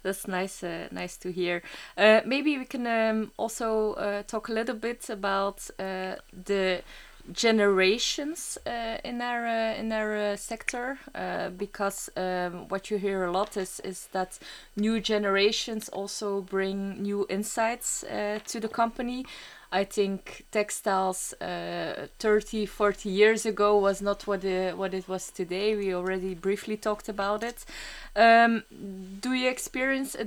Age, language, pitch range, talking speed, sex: 20-39, English, 195-230 Hz, 155 wpm, female